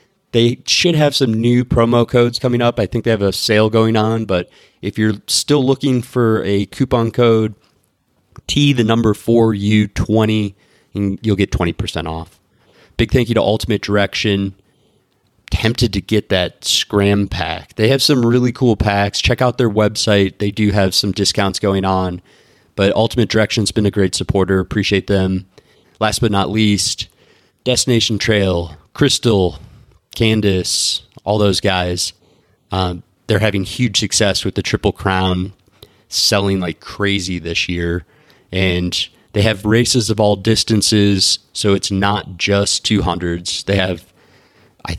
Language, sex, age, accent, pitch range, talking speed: English, male, 30-49, American, 95-115 Hz, 155 wpm